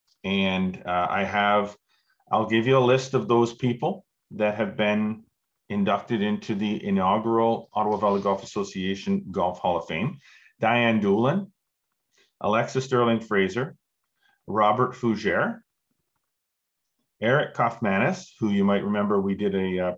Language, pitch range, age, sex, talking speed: English, 100-130 Hz, 40-59, male, 130 wpm